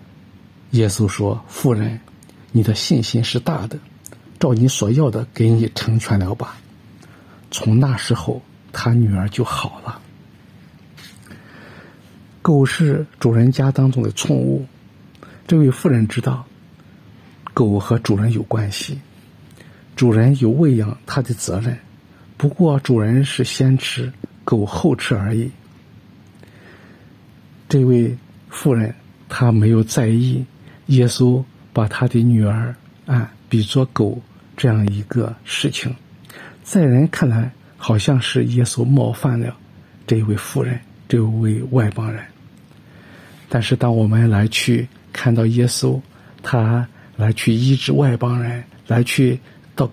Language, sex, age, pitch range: Chinese, male, 50-69, 110-135 Hz